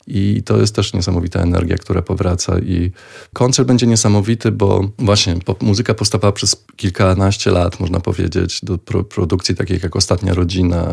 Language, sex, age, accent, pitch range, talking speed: Polish, male, 20-39, native, 95-110 Hz, 155 wpm